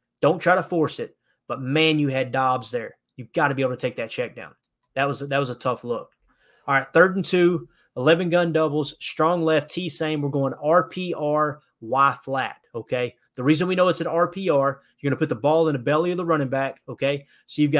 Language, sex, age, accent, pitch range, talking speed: English, male, 20-39, American, 135-160 Hz, 225 wpm